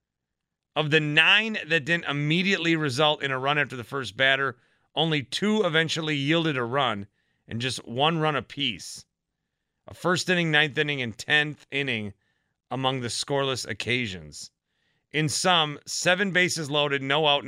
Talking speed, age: 150 wpm, 30-49